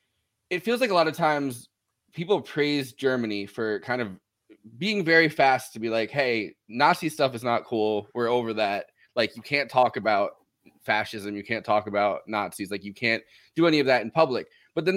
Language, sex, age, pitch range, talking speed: English, male, 20-39, 110-140 Hz, 200 wpm